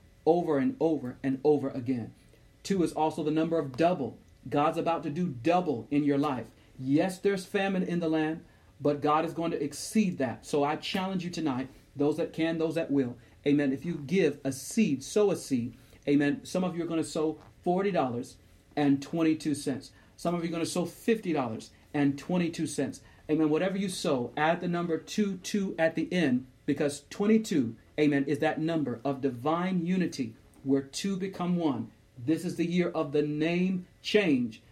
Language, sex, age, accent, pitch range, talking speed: English, male, 40-59, American, 140-170 Hz, 180 wpm